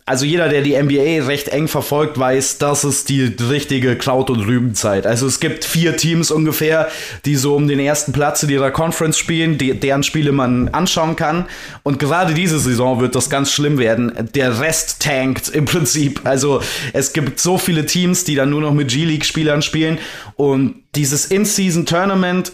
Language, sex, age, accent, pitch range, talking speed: German, male, 20-39, German, 135-155 Hz, 185 wpm